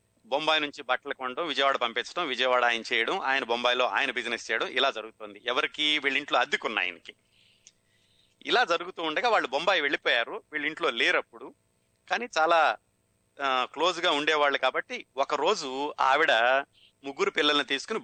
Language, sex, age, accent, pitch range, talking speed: Telugu, male, 30-49, native, 115-145 Hz, 135 wpm